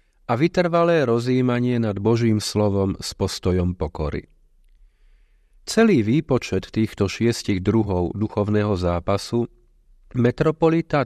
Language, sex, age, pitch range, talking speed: Slovak, male, 40-59, 95-125 Hz, 90 wpm